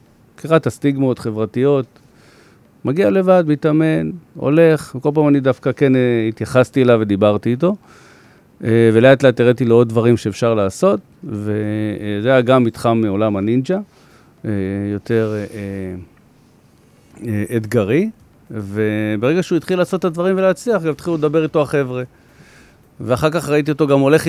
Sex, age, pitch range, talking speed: male, 50-69, 110-150 Hz, 120 wpm